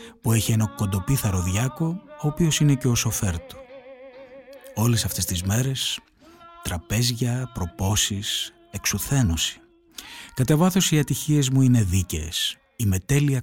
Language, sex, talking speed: Greek, male, 125 wpm